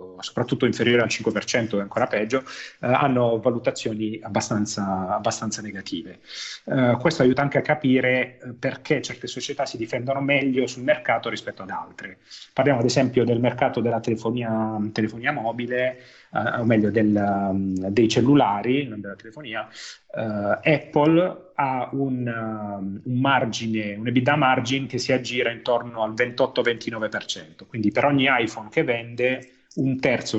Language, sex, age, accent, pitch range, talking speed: Italian, male, 30-49, native, 110-130 Hz, 140 wpm